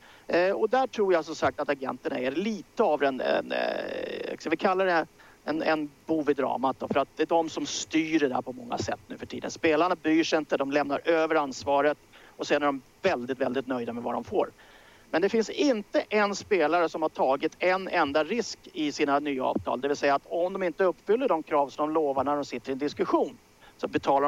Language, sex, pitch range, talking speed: English, male, 145-200 Hz, 215 wpm